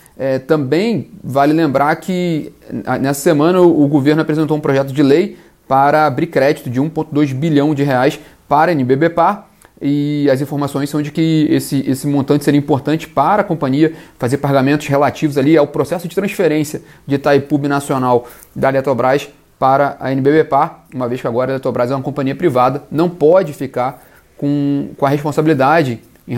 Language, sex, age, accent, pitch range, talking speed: Portuguese, male, 30-49, Brazilian, 135-155 Hz, 165 wpm